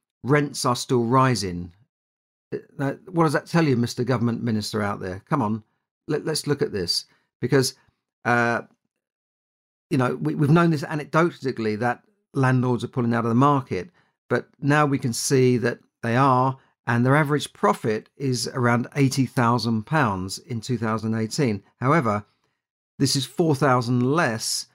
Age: 50-69